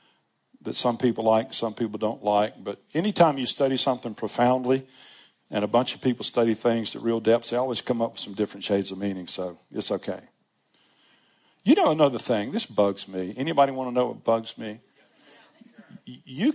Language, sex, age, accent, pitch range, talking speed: English, male, 50-69, American, 115-165 Hz, 190 wpm